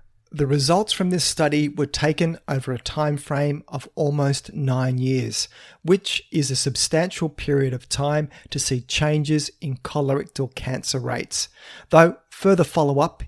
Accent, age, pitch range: Australian, 40-59, 130-160 Hz